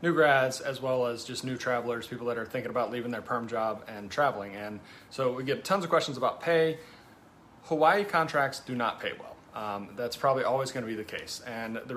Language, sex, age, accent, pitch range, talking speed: English, male, 30-49, American, 115-140 Hz, 220 wpm